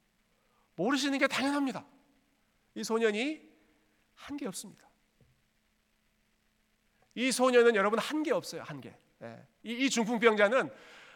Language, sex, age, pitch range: Korean, male, 40-59, 165-235 Hz